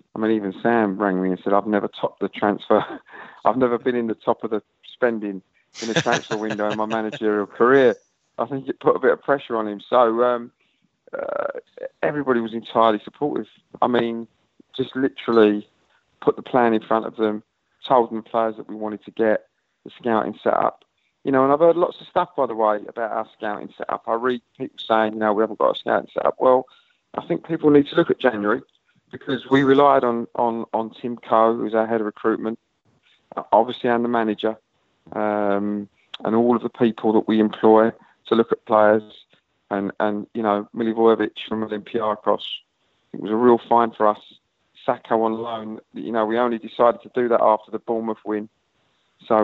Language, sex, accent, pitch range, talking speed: English, male, British, 105-120 Hz, 200 wpm